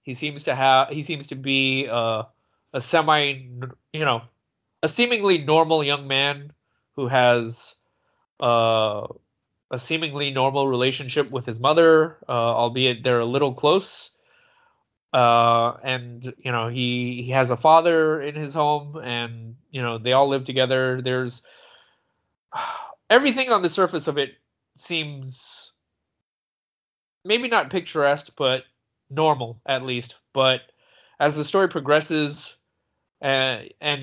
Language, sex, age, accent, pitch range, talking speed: English, male, 20-39, American, 125-155 Hz, 130 wpm